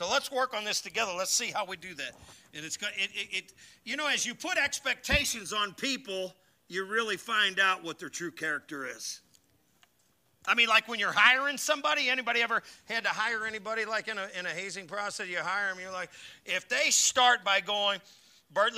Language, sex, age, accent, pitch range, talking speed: English, male, 50-69, American, 175-235 Hz, 210 wpm